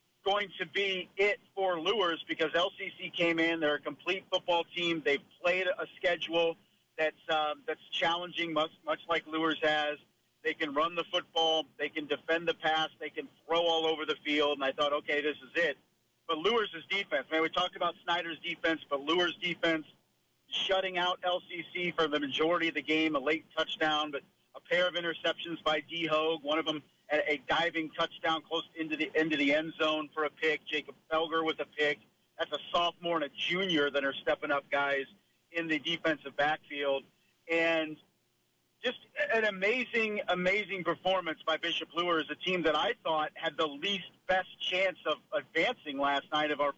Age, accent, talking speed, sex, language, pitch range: 40-59, American, 190 wpm, male, English, 155-175 Hz